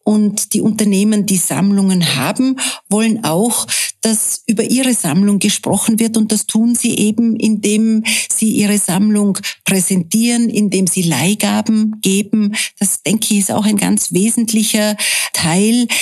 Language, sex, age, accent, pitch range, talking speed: German, female, 50-69, Austrian, 195-225 Hz, 140 wpm